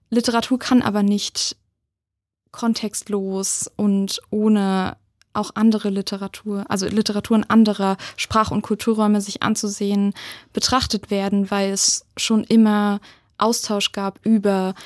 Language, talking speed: German, 110 wpm